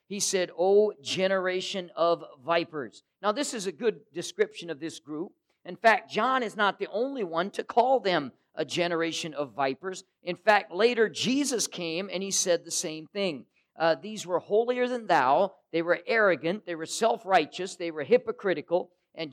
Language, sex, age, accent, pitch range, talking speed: English, male, 50-69, American, 160-200 Hz, 175 wpm